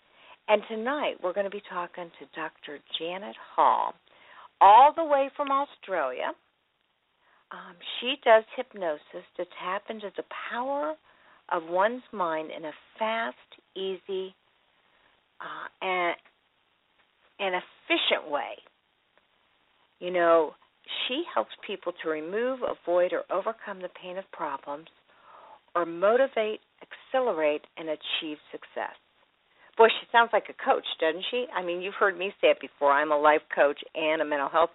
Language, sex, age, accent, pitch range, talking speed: English, female, 50-69, American, 165-250 Hz, 140 wpm